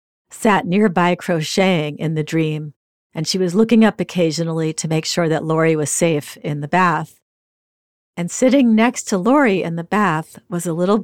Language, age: English, 50-69